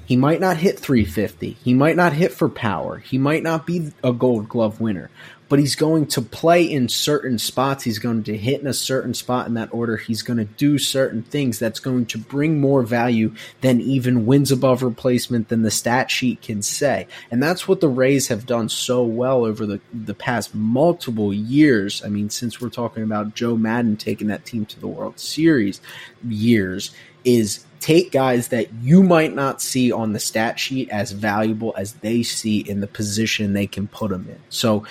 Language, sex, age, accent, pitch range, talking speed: English, male, 20-39, American, 110-130 Hz, 205 wpm